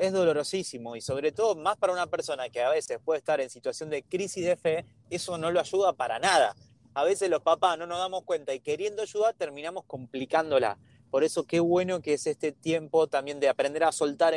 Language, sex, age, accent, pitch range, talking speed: Spanish, male, 30-49, Argentinian, 140-190 Hz, 215 wpm